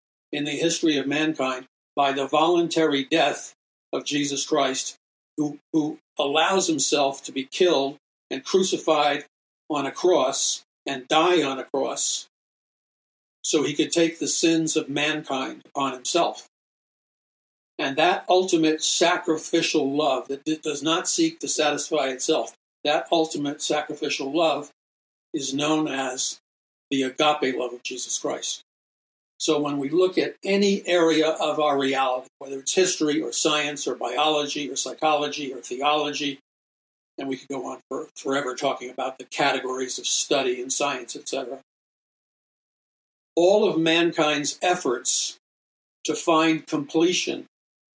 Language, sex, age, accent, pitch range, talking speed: English, male, 60-79, American, 140-165 Hz, 135 wpm